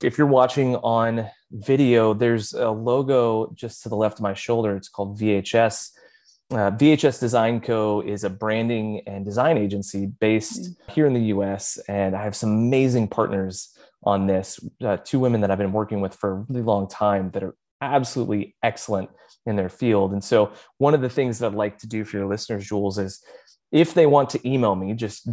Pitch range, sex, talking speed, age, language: 100-120 Hz, male, 200 wpm, 20-39, English